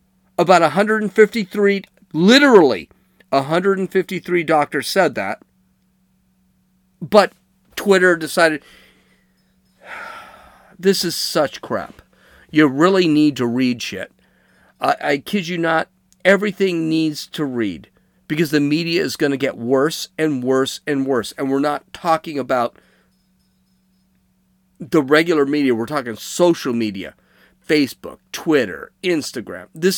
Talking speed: 115 wpm